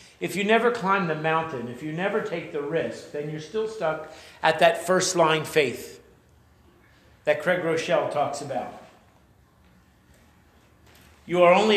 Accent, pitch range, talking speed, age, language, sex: American, 150-195 Hz, 145 wpm, 50-69, English, male